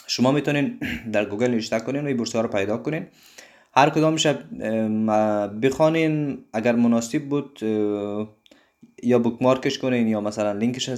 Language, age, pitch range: Persian, 20-39, 105-125 Hz